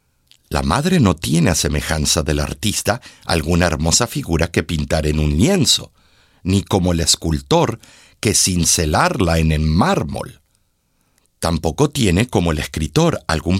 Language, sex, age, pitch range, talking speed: Spanish, male, 60-79, 80-135 Hz, 135 wpm